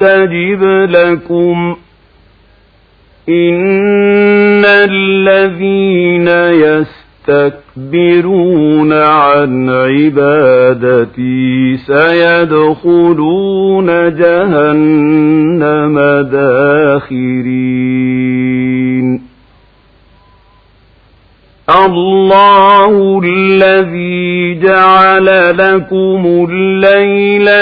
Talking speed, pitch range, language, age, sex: 30 wpm, 130-190 Hz, Arabic, 50-69, male